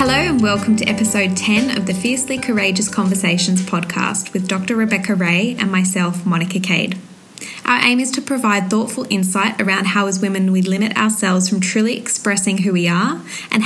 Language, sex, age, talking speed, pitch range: English, female, 20-39, 180 wpm, 190-230 Hz